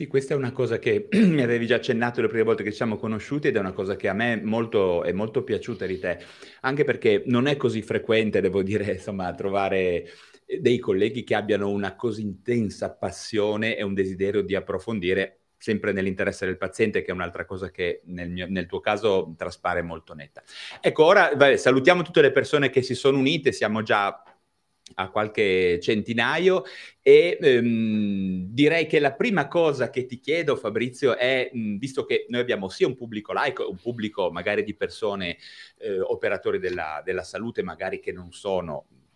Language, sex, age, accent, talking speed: Italian, male, 30-49, native, 185 wpm